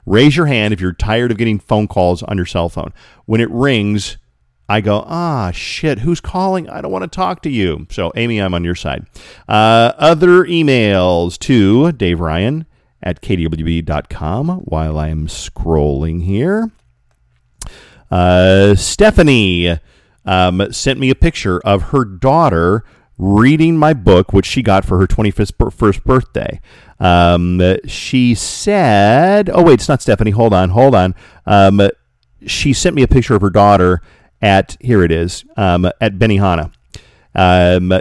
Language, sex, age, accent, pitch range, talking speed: English, male, 40-59, American, 90-125 Hz, 155 wpm